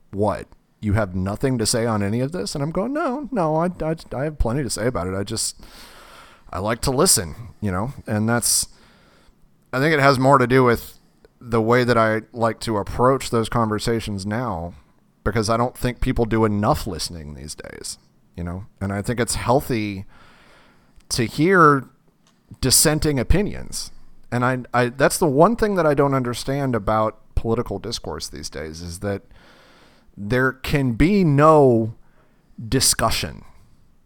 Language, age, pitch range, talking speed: English, 30-49, 105-130 Hz, 170 wpm